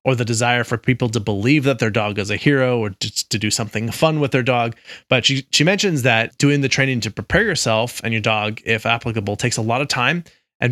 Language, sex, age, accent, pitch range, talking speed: English, male, 30-49, American, 115-135 Hz, 250 wpm